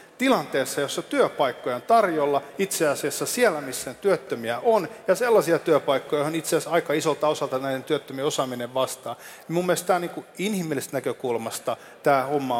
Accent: native